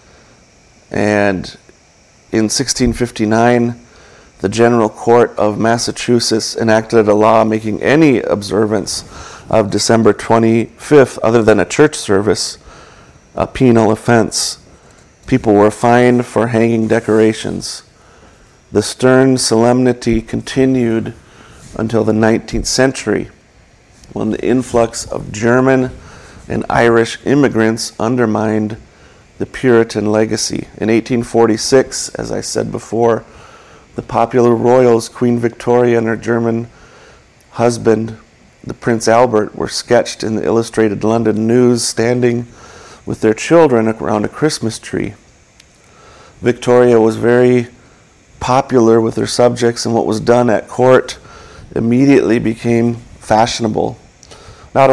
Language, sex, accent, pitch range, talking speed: English, male, American, 110-120 Hz, 110 wpm